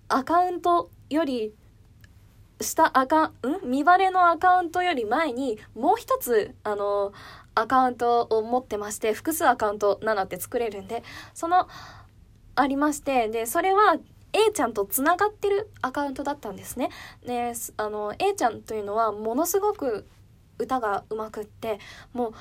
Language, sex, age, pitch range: Japanese, female, 10-29, 215-345 Hz